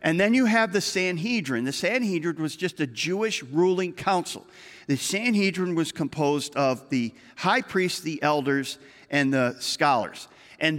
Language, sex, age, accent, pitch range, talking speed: English, male, 50-69, American, 150-220 Hz, 155 wpm